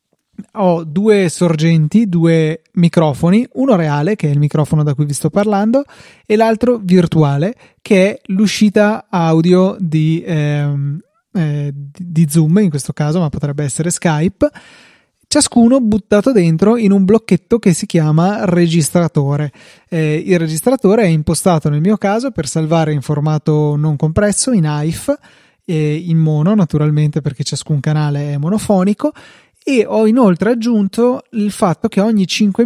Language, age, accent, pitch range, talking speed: Italian, 20-39, native, 155-210 Hz, 145 wpm